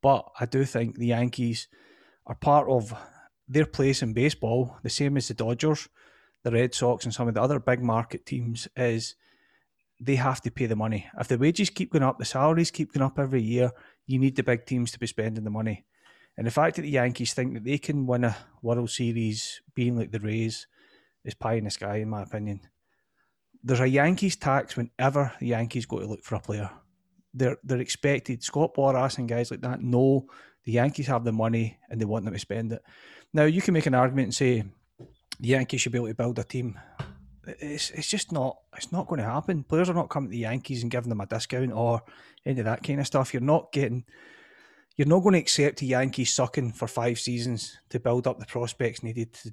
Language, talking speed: English, 225 wpm